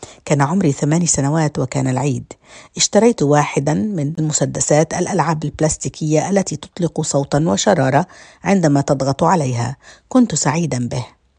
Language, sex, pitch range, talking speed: Arabic, female, 145-175 Hz, 115 wpm